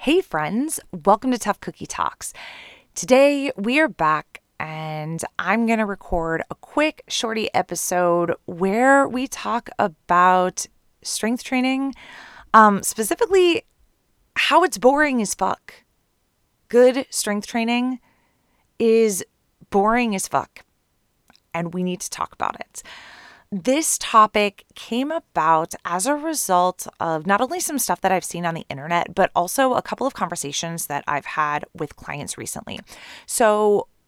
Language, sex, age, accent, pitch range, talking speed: English, female, 20-39, American, 165-225 Hz, 135 wpm